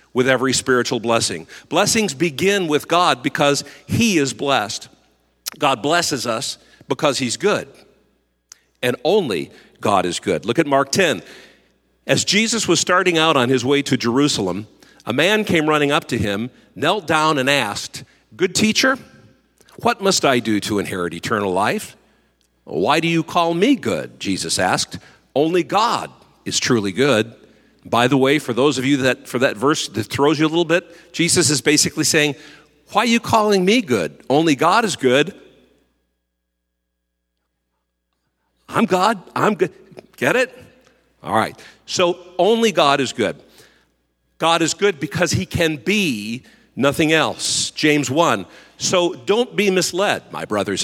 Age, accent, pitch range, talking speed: 50-69, American, 110-170 Hz, 155 wpm